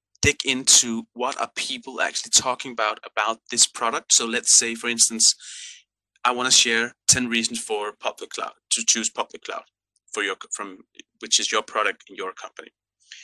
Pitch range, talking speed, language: 100-125 Hz, 175 wpm, English